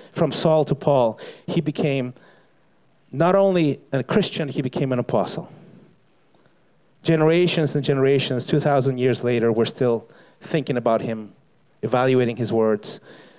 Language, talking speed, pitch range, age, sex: English, 125 wpm, 130-195 Hz, 30-49, male